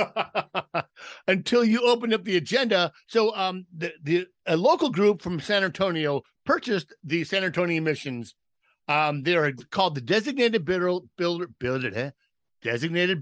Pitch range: 145-190 Hz